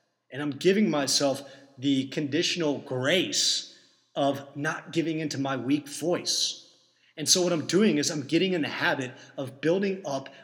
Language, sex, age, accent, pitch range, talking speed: English, male, 30-49, American, 135-160 Hz, 160 wpm